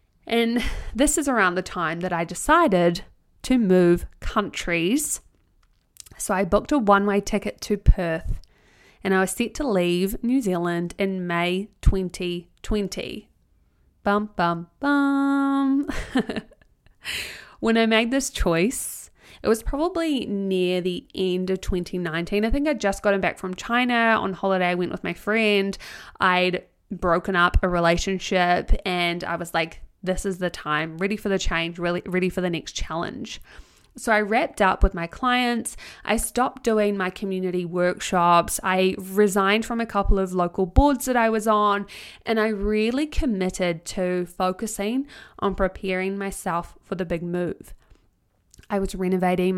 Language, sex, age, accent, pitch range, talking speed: English, female, 20-39, Australian, 180-220 Hz, 155 wpm